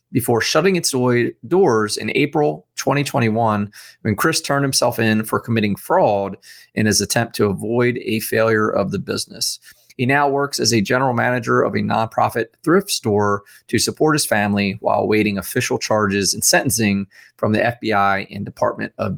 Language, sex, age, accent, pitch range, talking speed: English, male, 30-49, American, 110-145 Hz, 165 wpm